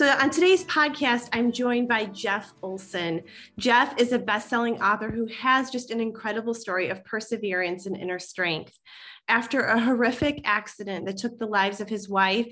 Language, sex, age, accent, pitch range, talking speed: English, female, 30-49, American, 195-235 Hz, 175 wpm